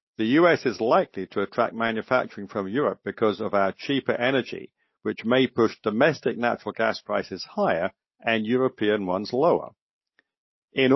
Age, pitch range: 50-69, 110-140 Hz